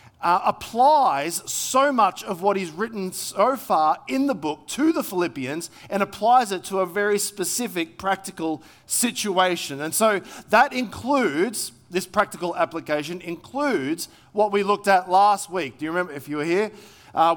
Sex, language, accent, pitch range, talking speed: male, English, Australian, 155-210 Hz, 160 wpm